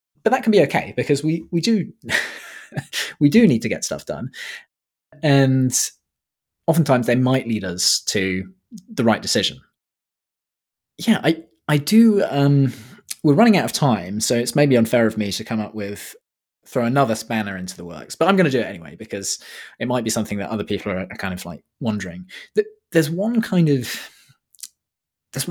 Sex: male